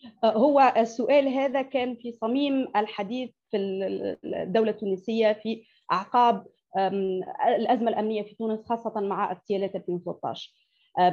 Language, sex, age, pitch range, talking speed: Arabic, female, 30-49, 205-270 Hz, 110 wpm